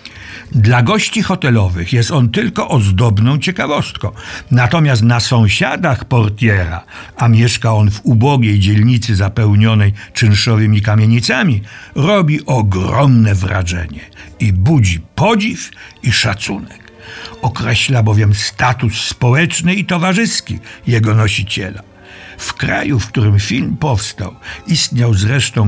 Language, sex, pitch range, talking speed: Polish, male, 105-135 Hz, 105 wpm